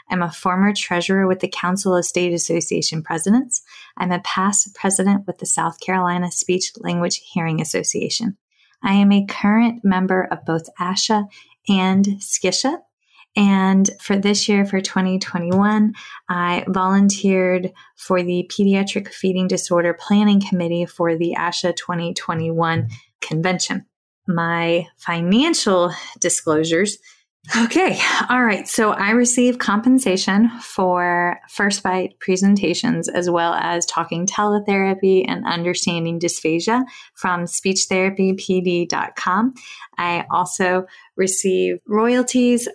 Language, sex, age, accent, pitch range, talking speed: English, female, 20-39, American, 175-200 Hz, 115 wpm